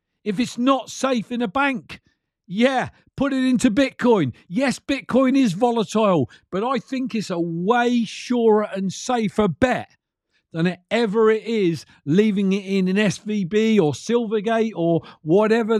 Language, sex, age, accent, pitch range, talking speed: English, male, 50-69, British, 185-240 Hz, 150 wpm